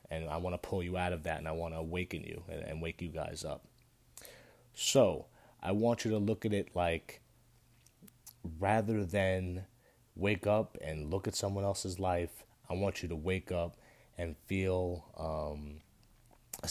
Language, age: English, 30-49